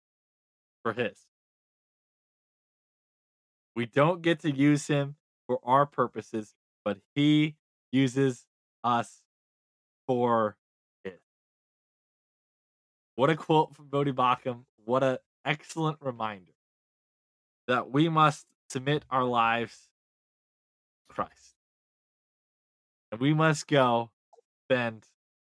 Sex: male